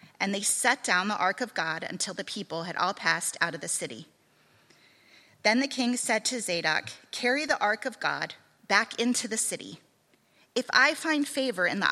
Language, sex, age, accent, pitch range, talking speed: English, female, 30-49, American, 185-250 Hz, 195 wpm